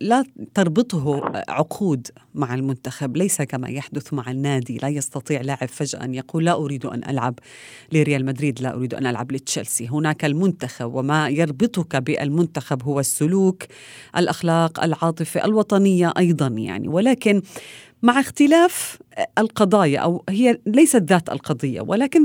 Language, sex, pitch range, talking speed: Arabic, female, 140-210 Hz, 130 wpm